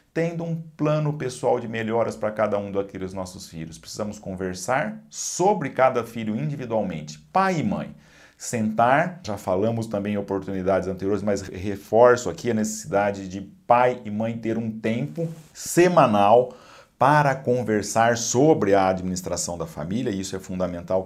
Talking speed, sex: 150 wpm, male